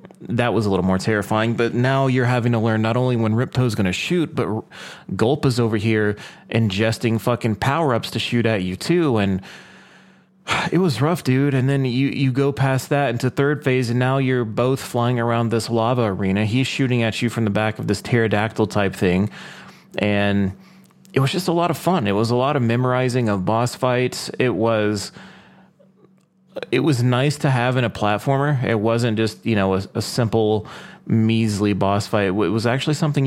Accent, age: American, 30-49